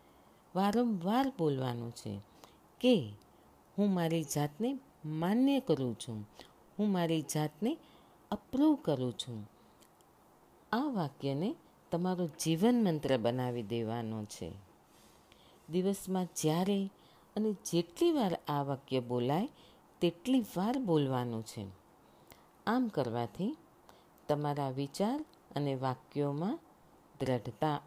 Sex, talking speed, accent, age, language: female, 95 wpm, native, 50-69, Gujarati